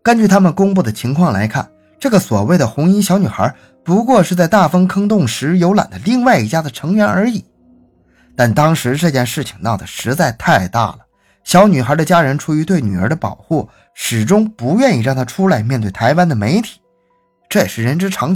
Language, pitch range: Chinese, 120-195 Hz